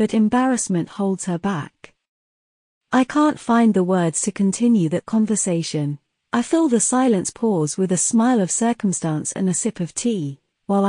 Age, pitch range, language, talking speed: 40-59, 180-230 Hz, Italian, 165 wpm